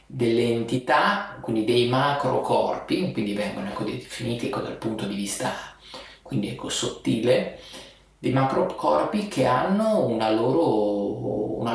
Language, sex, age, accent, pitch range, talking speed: Italian, male, 30-49, native, 110-130 Hz, 135 wpm